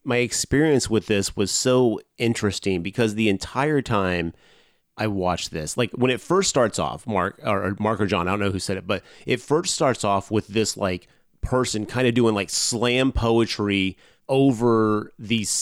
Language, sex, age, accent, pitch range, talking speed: English, male, 30-49, American, 95-115 Hz, 185 wpm